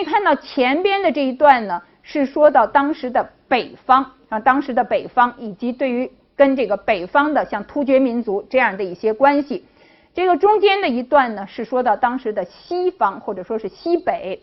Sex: female